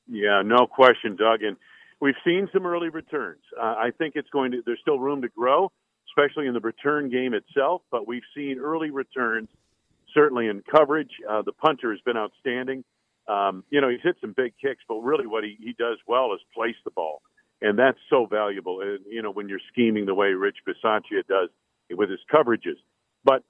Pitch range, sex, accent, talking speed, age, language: 115-160 Hz, male, American, 200 wpm, 50-69, English